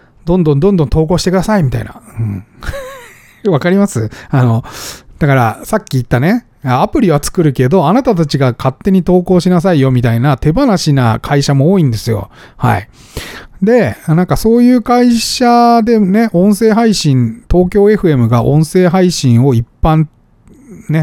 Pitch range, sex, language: 125-205 Hz, male, Japanese